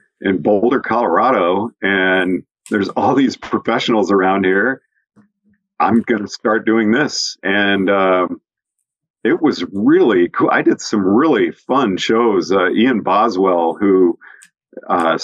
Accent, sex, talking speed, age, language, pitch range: American, male, 125 wpm, 50-69, English, 100-125 Hz